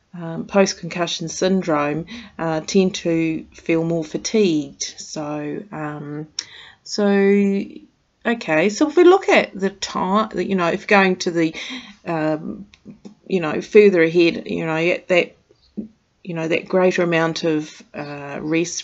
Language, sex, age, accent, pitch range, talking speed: English, female, 40-59, Australian, 160-200 Hz, 140 wpm